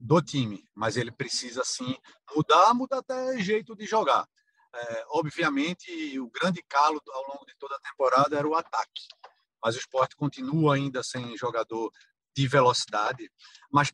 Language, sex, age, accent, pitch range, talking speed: Portuguese, male, 50-69, Brazilian, 135-170 Hz, 155 wpm